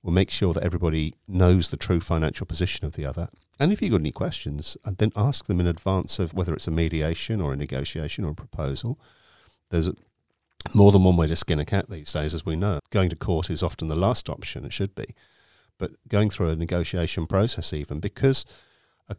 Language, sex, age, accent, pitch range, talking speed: English, male, 50-69, British, 80-100 Hz, 215 wpm